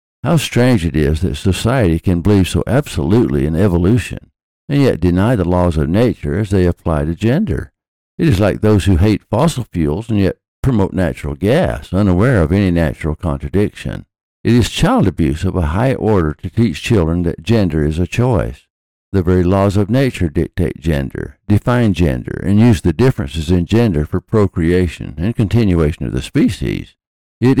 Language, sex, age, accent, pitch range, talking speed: English, male, 60-79, American, 85-110 Hz, 175 wpm